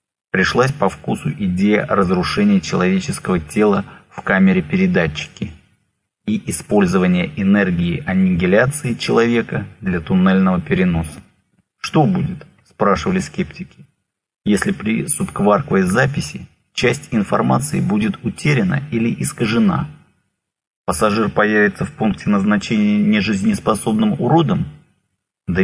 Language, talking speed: English, 95 wpm